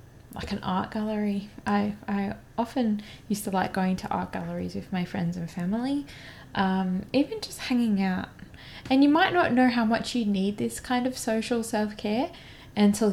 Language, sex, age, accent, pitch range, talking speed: English, female, 20-39, Australian, 175-210 Hz, 180 wpm